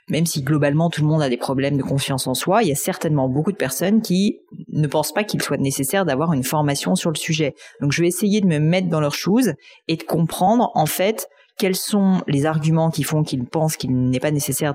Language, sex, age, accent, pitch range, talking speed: French, female, 30-49, French, 140-170 Hz, 245 wpm